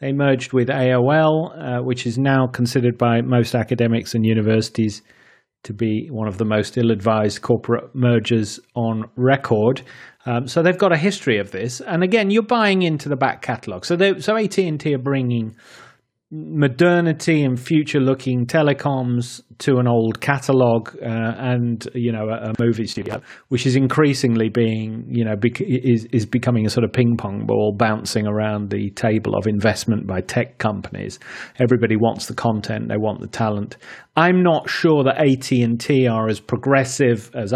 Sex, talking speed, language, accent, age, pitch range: male, 165 wpm, English, British, 30-49, 110-135 Hz